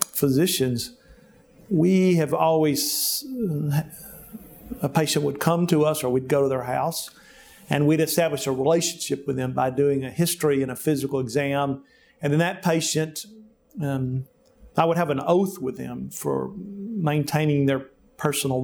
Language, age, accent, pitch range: English, 50-69, American, 140-170 Hz